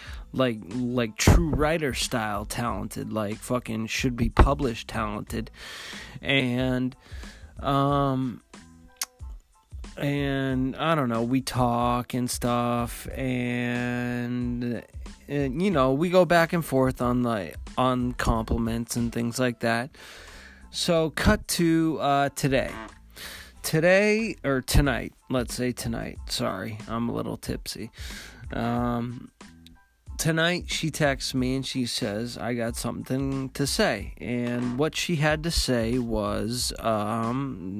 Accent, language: American, English